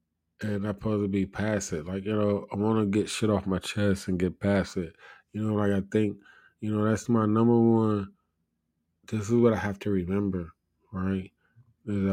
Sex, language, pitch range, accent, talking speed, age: male, English, 95-105 Hz, American, 200 wpm, 20-39